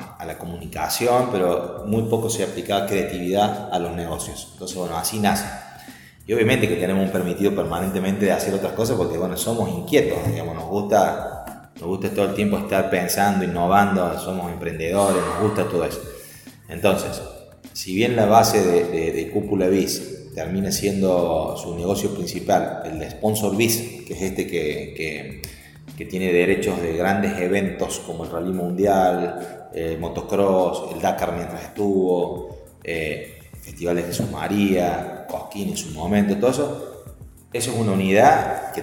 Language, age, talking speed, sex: Spanish, 30-49, 160 wpm, male